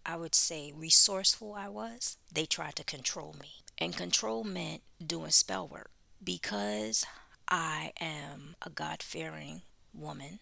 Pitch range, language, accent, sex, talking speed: 145-175 Hz, English, American, female, 130 wpm